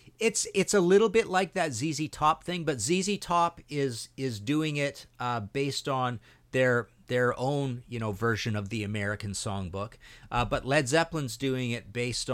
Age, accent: 50-69, American